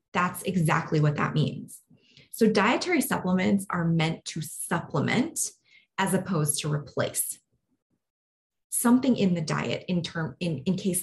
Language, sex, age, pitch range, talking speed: English, female, 20-39, 150-185 Hz, 135 wpm